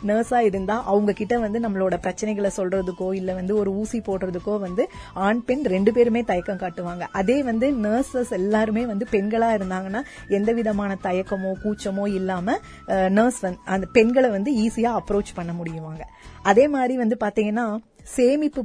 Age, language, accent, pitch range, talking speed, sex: 30-49, Tamil, native, 190-230 Hz, 140 wpm, female